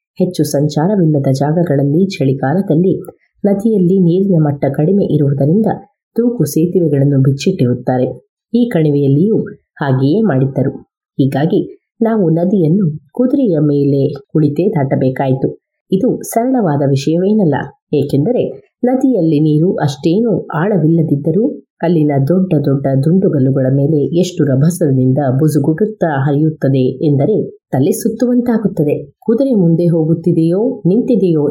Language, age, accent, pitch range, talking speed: Kannada, 30-49, native, 140-195 Hz, 90 wpm